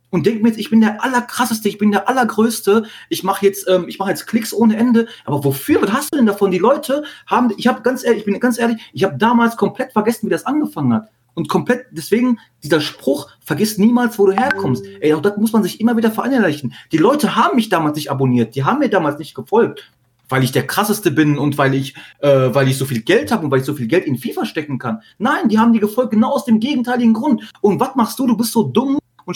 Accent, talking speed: German, 255 wpm